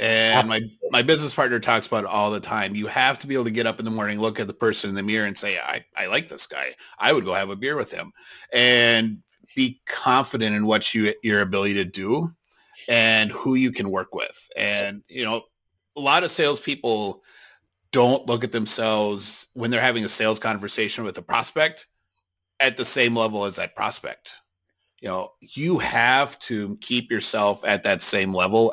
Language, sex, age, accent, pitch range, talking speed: English, male, 30-49, American, 105-120 Hz, 205 wpm